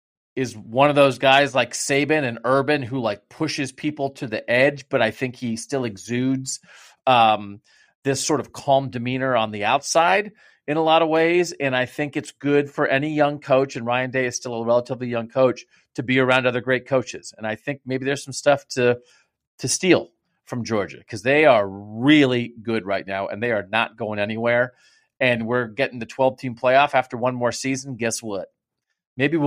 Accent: American